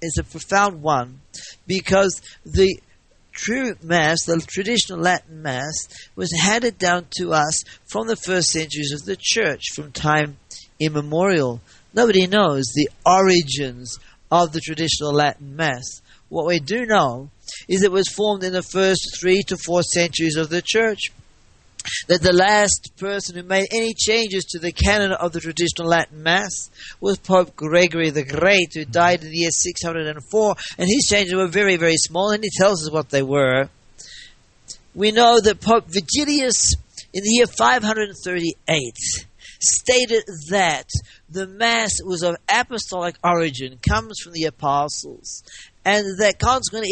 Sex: male